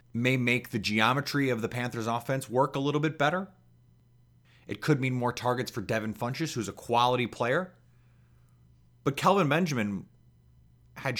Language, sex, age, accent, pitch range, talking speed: English, male, 30-49, American, 115-150 Hz, 155 wpm